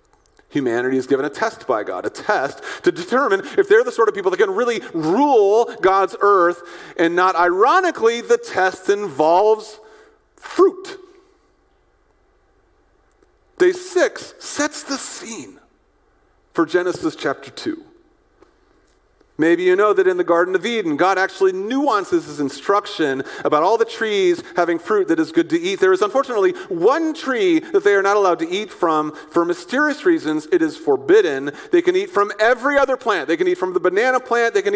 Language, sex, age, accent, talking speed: English, male, 40-59, American, 170 wpm